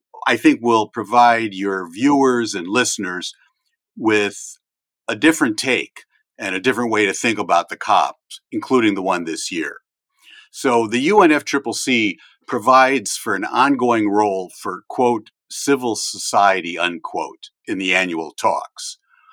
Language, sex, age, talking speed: English, male, 50-69, 135 wpm